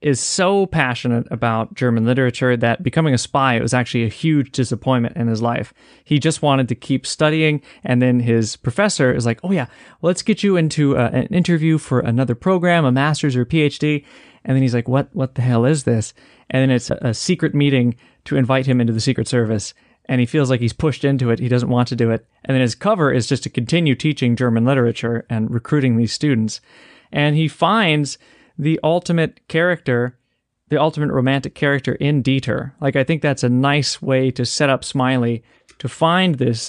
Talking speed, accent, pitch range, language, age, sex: 210 wpm, American, 120-150 Hz, English, 30-49, male